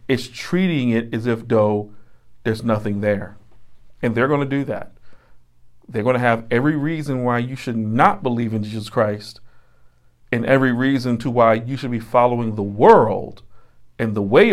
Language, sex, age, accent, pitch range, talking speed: English, male, 40-59, American, 105-145 Hz, 170 wpm